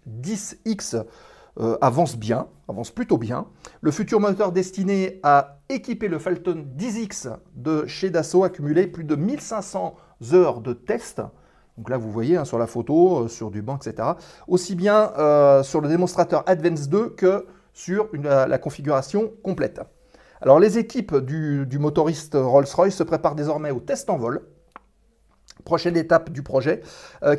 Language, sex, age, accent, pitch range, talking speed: French, male, 40-59, French, 145-190 Hz, 160 wpm